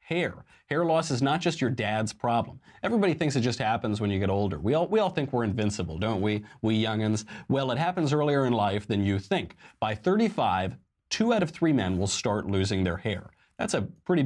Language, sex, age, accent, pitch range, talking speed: English, male, 40-59, American, 105-140 Hz, 220 wpm